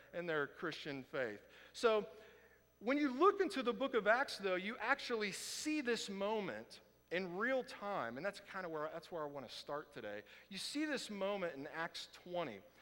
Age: 50-69